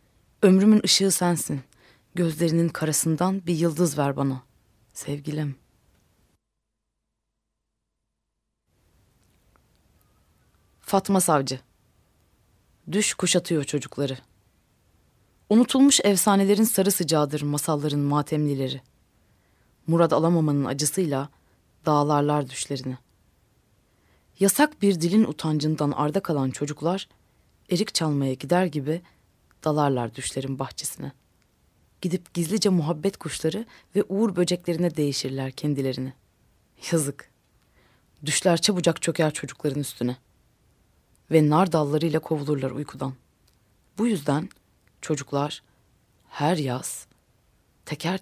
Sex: female